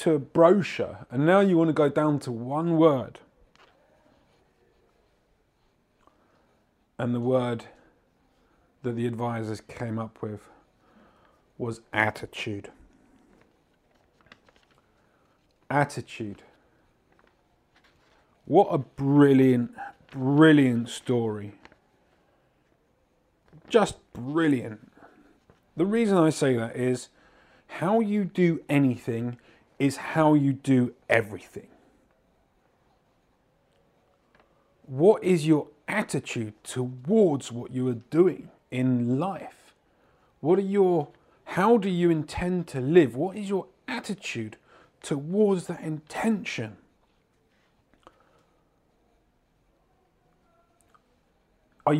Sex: male